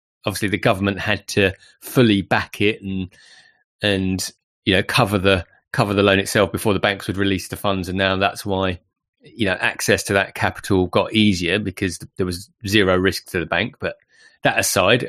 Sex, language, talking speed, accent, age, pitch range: male, English, 190 wpm, British, 30-49, 90-105 Hz